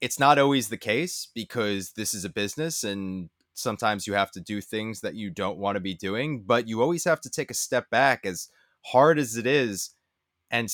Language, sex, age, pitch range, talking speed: English, male, 20-39, 100-130 Hz, 220 wpm